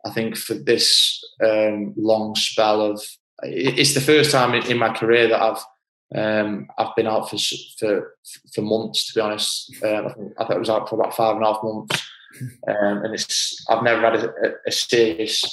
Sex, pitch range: male, 105-115 Hz